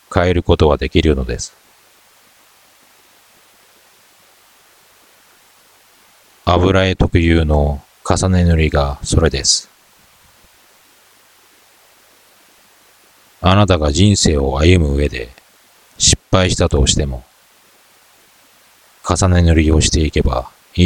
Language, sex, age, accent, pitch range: Japanese, male, 40-59, native, 70-90 Hz